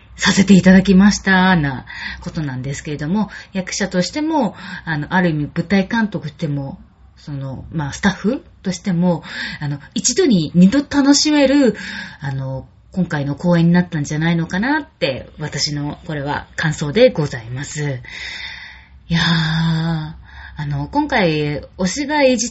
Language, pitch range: Japanese, 145-205 Hz